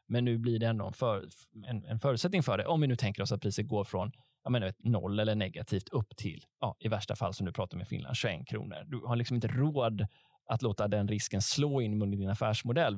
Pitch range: 105-135 Hz